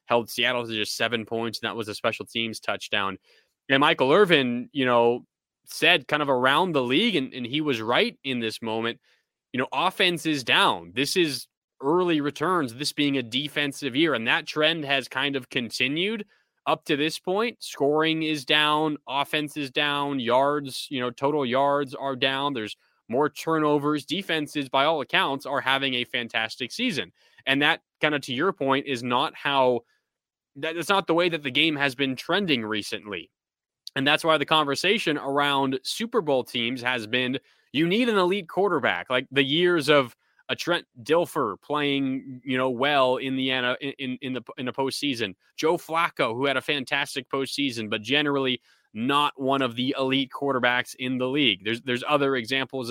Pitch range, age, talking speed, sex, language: 125-150 Hz, 20-39, 180 wpm, male, English